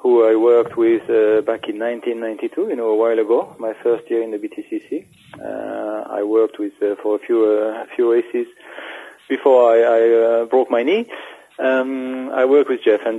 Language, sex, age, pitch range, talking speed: English, male, 40-59, 110-150 Hz, 200 wpm